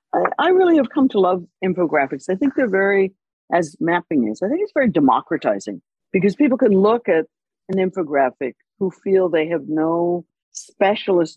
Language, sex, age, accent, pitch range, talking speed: English, female, 60-79, American, 160-265 Hz, 170 wpm